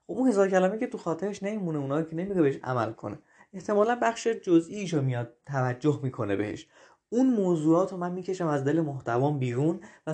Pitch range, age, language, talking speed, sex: 140-185 Hz, 20-39, Persian, 180 wpm, male